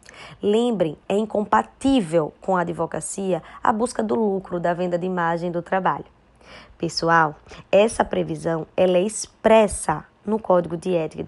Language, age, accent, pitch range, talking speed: Portuguese, 20-39, Brazilian, 180-225 Hz, 140 wpm